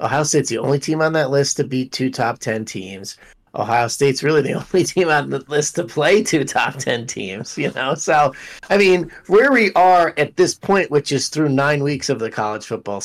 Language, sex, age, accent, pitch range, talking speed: English, male, 30-49, American, 120-170 Hz, 225 wpm